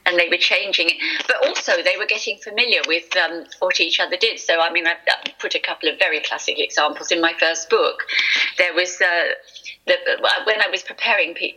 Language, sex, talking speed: English, female, 210 wpm